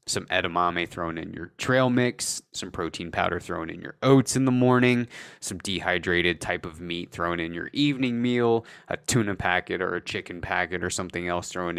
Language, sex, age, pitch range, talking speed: English, male, 20-39, 90-120 Hz, 195 wpm